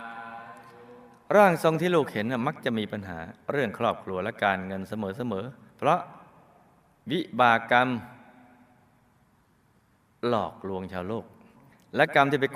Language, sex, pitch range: Thai, male, 105-130 Hz